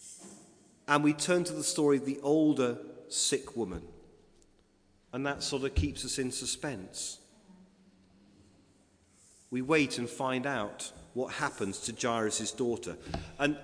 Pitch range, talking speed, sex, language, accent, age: 125-175 Hz, 130 wpm, male, English, British, 40-59